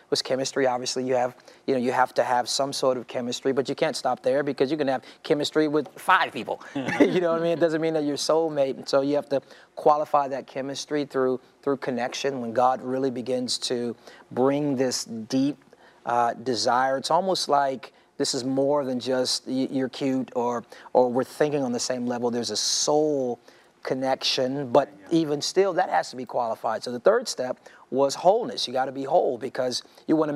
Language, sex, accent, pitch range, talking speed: English, male, American, 125-145 Hz, 200 wpm